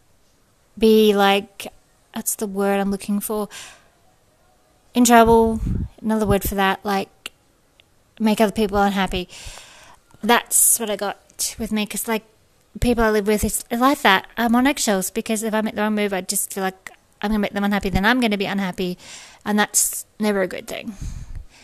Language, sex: English, female